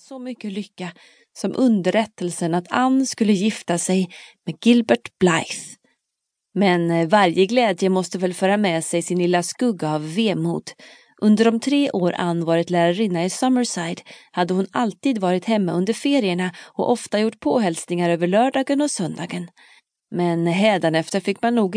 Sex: female